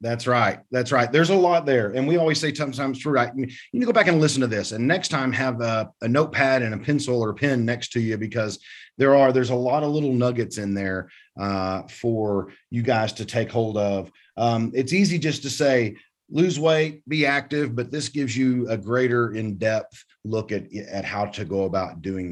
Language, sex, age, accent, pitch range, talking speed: English, male, 30-49, American, 115-145 Hz, 220 wpm